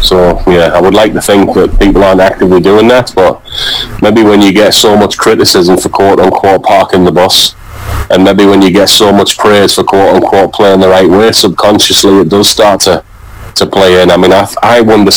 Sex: male